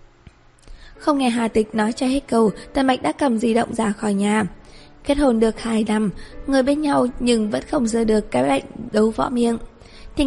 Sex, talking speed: female, 210 wpm